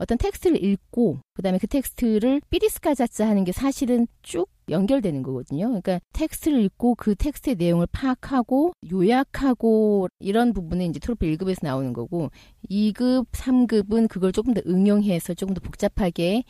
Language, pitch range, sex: Korean, 175-250 Hz, female